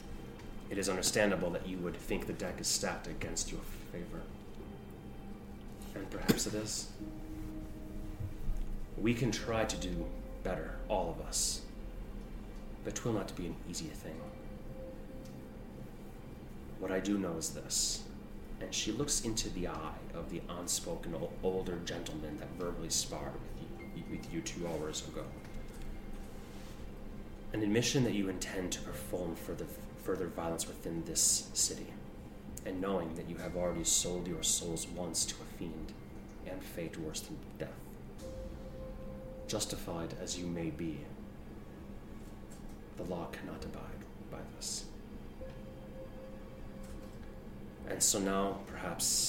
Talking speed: 130 wpm